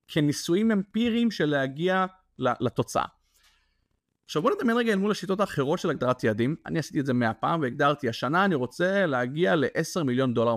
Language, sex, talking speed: English, male, 165 wpm